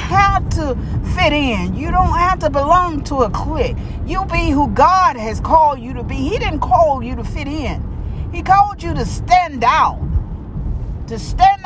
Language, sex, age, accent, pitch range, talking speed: English, female, 40-59, American, 260-385 Hz, 185 wpm